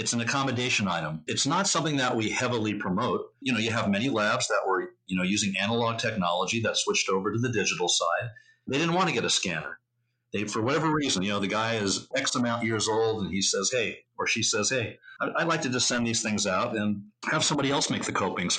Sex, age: male, 50-69